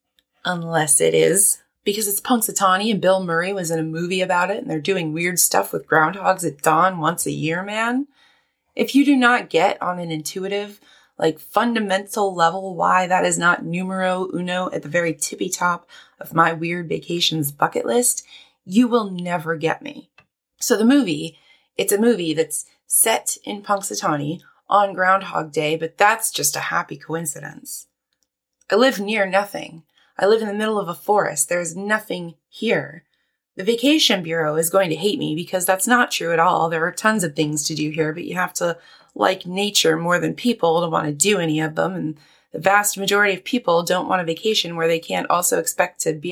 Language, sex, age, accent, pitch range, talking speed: English, female, 20-39, American, 165-205 Hz, 195 wpm